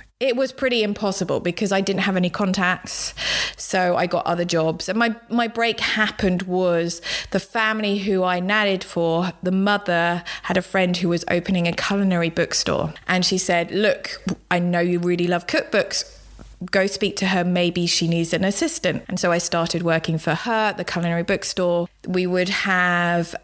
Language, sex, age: English, female, 20-39